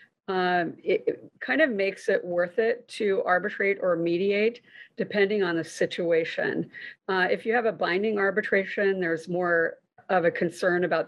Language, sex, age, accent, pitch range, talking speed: English, female, 40-59, American, 170-210 Hz, 160 wpm